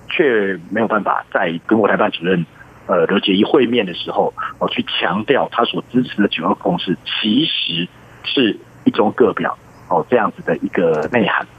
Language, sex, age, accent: Chinese, male, 50-69, native